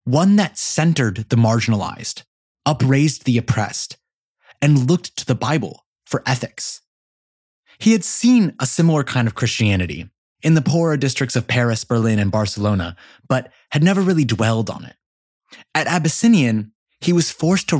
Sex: male